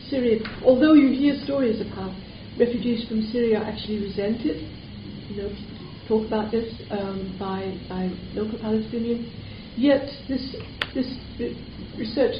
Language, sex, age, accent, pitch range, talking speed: English, female, 50-69, British, 205-230 Hz, 130 wpm